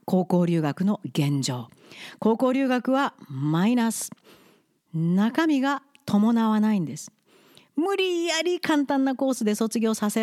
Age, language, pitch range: 40-59, Japanese, 185-275 Hz